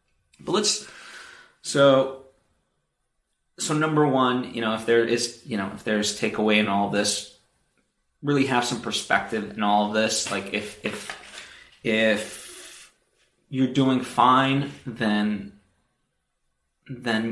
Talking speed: 125 wpm